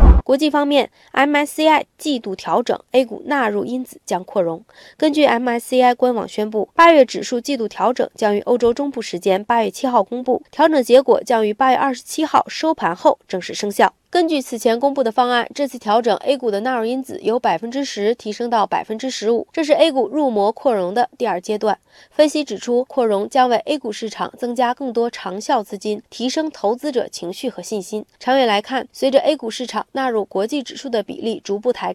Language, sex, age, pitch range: Chinese, female, 20-39, 215-270 Hz